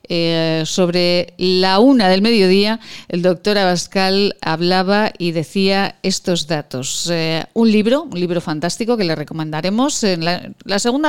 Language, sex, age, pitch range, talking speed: Spanish, female, 40-59, 165-205 Hz, 145 wpm